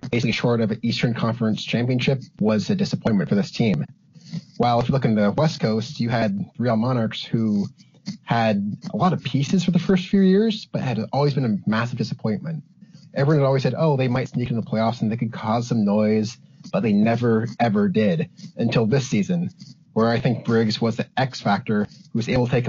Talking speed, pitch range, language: 210 wpm, 115-175 Hz, English